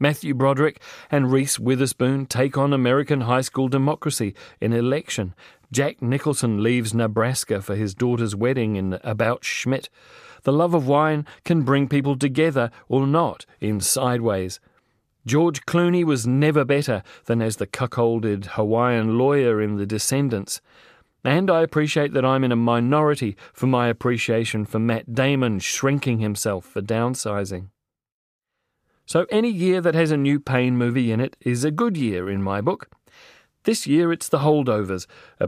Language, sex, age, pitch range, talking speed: English, male, 40-59, 115-140 Hz, 155 wpm